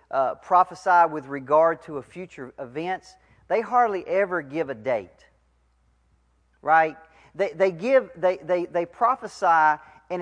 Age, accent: 40-59, American